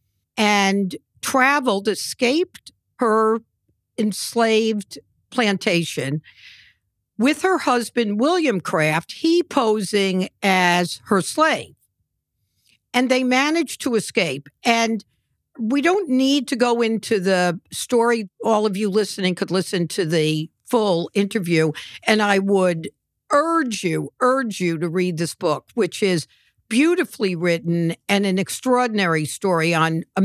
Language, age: English, 50-69